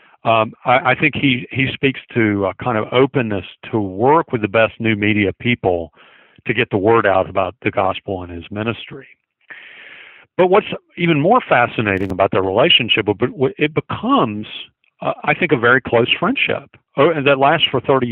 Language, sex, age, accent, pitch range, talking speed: English, male, 50-69, American, 105-140 Hz, 175 wpm